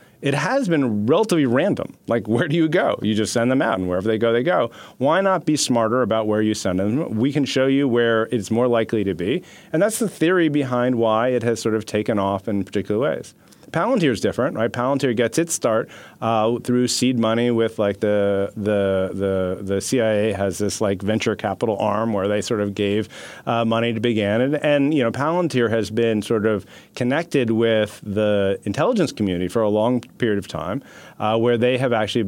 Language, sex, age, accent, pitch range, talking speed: English, male, 30-49, American, 105-125 Hz, 210 wpm